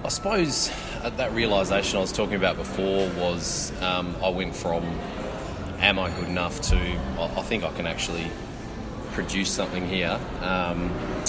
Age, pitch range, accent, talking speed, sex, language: 20-39, 85-95 Hz, Australian, 150 wpm, male, English